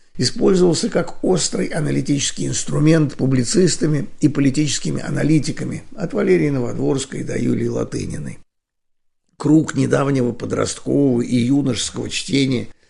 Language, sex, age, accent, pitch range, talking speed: Russian, male, 60-79, native, 120-145 Hz, 100 wpm